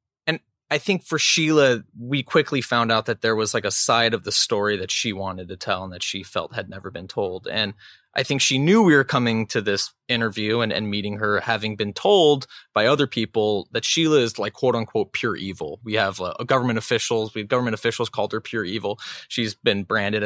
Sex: male